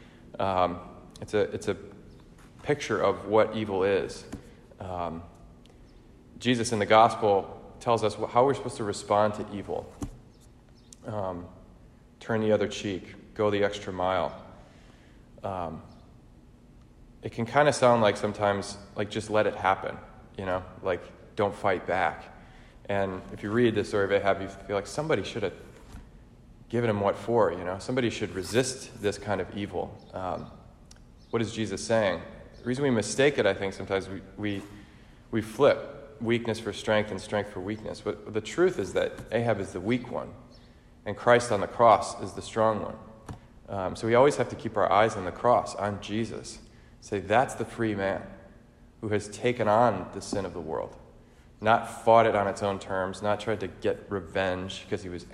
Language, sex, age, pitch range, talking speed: English, male, 30-49, 95-115 Hz, 180 wpm